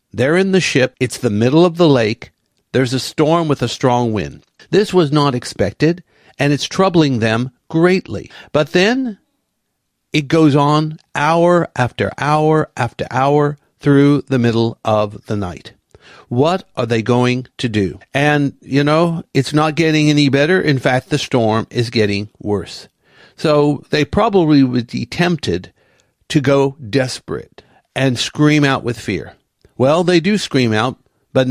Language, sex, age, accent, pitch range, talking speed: English, male, 60-79, American, 120-150 Hz, 160 wpm